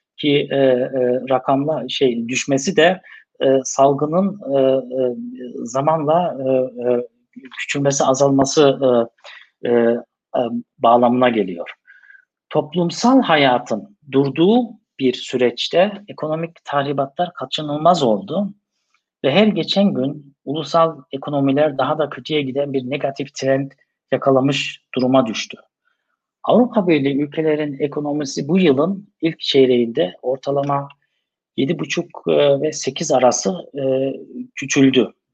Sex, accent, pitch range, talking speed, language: male, native, 130-160 Hz, 100 wpm, Turkish